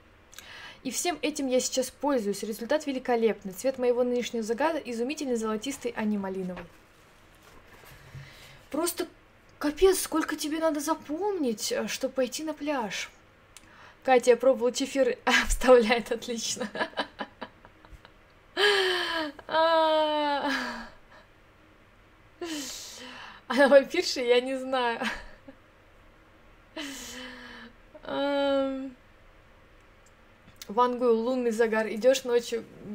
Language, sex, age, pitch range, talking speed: Russian, female, 20-39, 210-280 Hz, 80 wpm